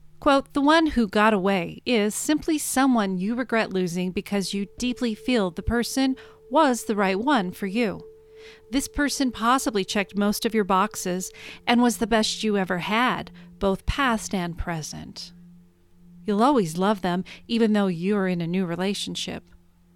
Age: 40-59